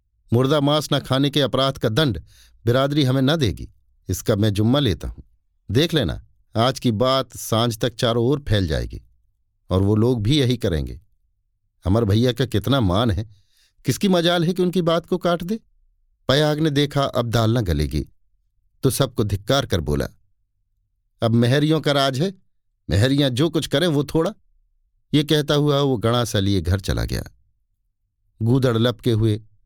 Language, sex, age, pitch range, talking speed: Hindi, male, 50-69, 95-135 Hz, 170 wpm